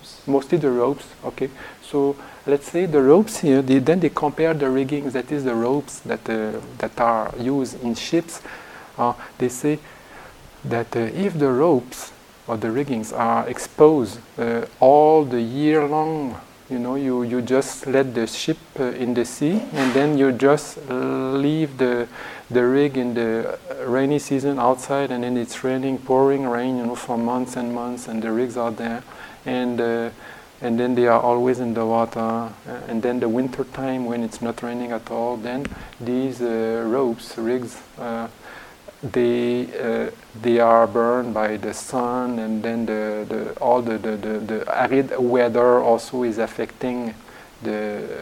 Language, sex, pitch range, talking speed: English, male, 115-135 Hz, 170 wpm